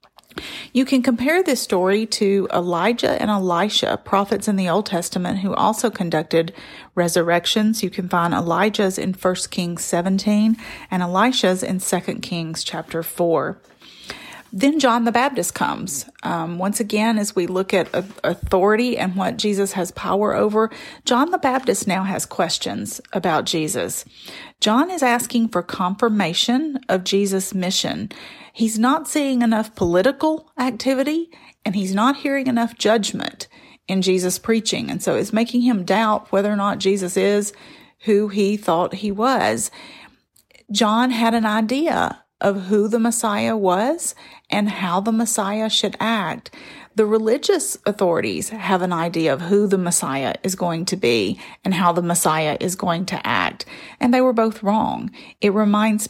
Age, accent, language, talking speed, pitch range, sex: 40-59, American, English, 155 wpm, 185-235 Hz, female